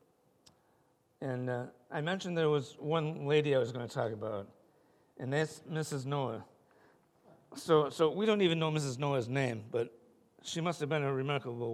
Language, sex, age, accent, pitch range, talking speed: English, male, 60-79, American, 130-155 Hz, 175 wpm